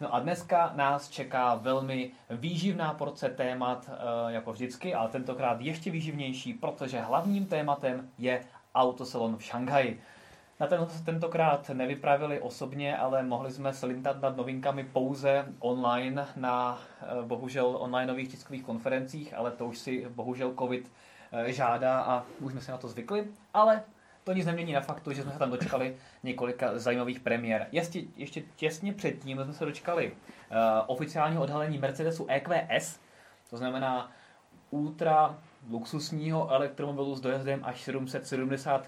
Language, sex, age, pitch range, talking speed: Czech, male, 20-39, 120-140 Hz, 140 wpm